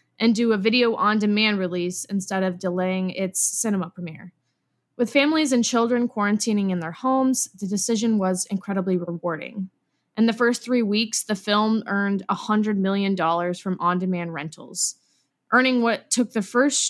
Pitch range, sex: 185-235 Hz, female